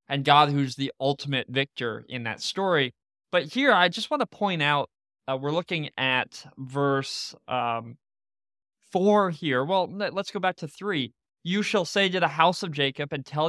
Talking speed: 180 wpm